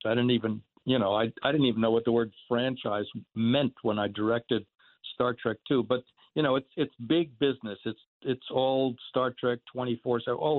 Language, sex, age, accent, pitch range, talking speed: English, male, 60-79, American, 115-155 Hz, 205 wpm